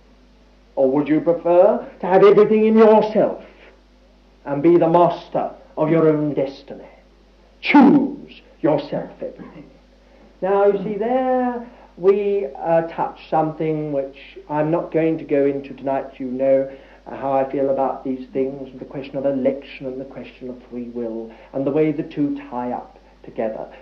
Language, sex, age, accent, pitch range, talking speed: English, male, 60-79, British, 145-225 Hz, 160 wpm